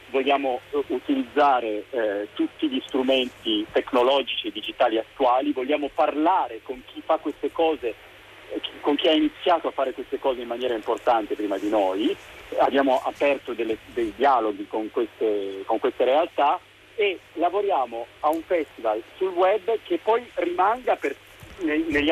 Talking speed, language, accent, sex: 135 wpm, Italian, native, male